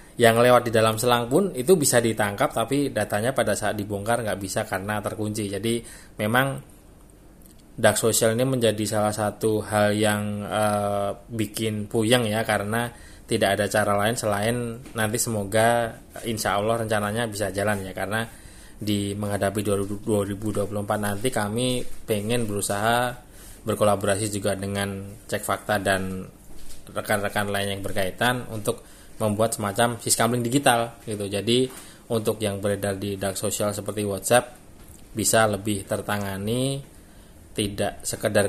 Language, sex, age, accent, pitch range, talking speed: Indonesian, male, 20-39, native, 100-110 Hz, 130 wpm